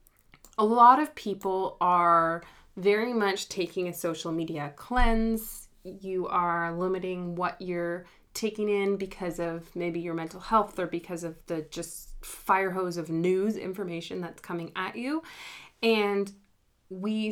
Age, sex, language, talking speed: 20-39, female, English, 140 wpm